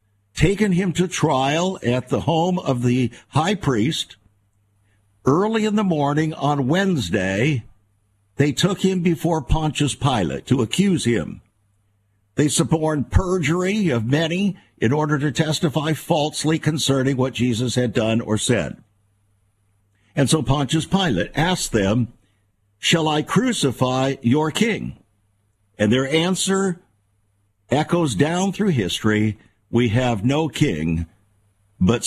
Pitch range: 110-165 Hz